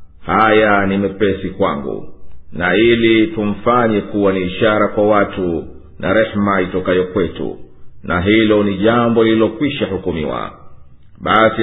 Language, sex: Swahili, male